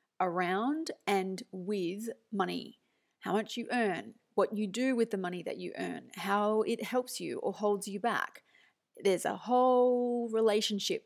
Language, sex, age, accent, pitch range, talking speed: English, female, 30-49, Australian, 190-235 Hz, 155 wpm